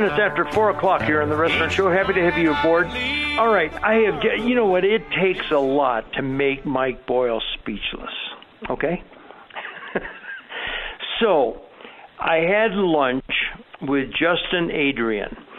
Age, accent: 60-79, American